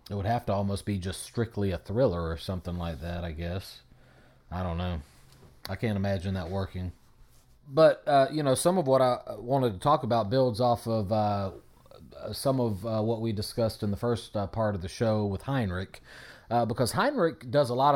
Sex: male